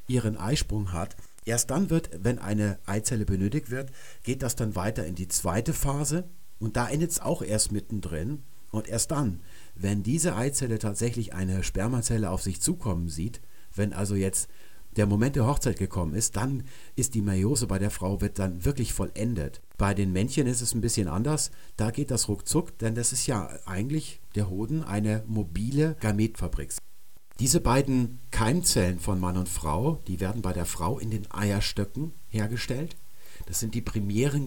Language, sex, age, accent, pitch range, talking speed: German, male, 50-69, German, 95-130 Hz, 175 wpm